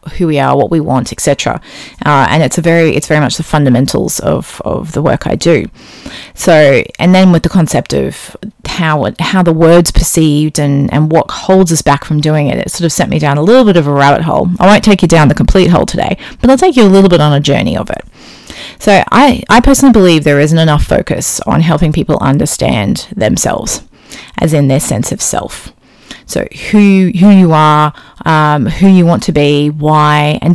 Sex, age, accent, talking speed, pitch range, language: female, 30-49, Australian, 215 wpm, 150-185 Hz, English